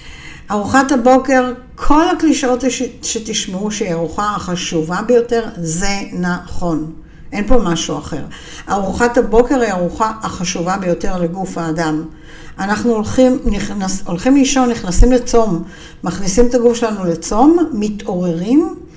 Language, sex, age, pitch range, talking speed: Hebrew, female, 60-79, 175-240 Hz, 115 wpm